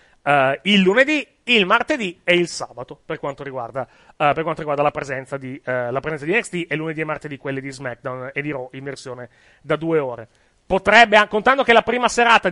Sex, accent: male, native